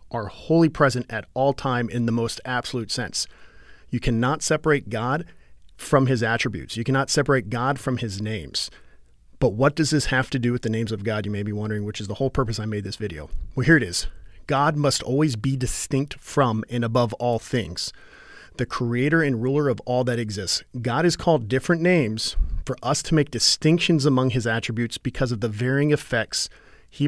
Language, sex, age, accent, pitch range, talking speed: English, male, 40-59, American, 115-140 Hz, 200 wpm